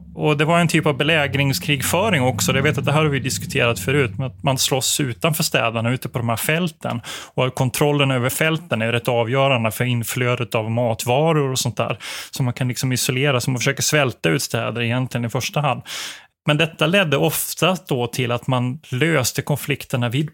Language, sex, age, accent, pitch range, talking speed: Swedish, male, 20-39, native, 120-145 Hz, 200 wpm